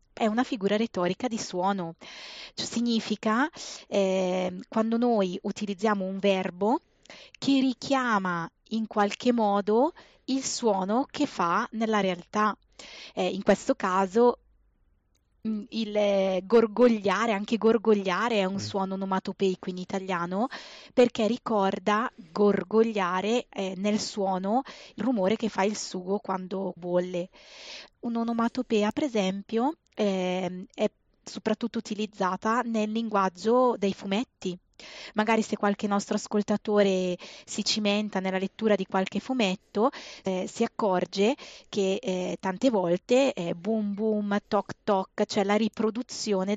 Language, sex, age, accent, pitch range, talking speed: Italian, female, 20-39, native, 190-225 Hz, 115 wpm